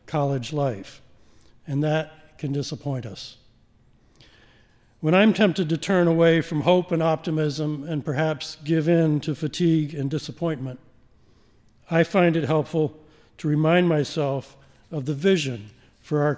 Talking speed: 135 wpm